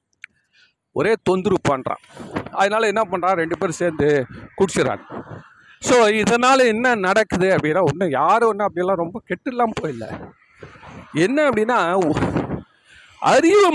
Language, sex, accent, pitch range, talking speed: Tamil, male, native, 180-235 Hz, 85 wpm